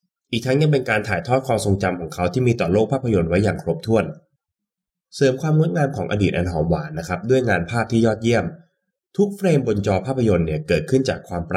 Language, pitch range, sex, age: Thai, 90-140 Hz, male, 20-39